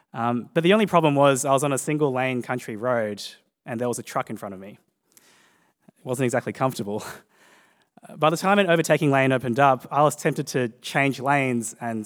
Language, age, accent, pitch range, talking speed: English, 20-39, Australian, 120-155 Hz, 210 wpm